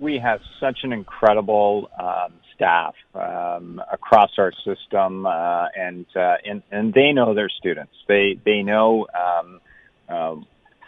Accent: American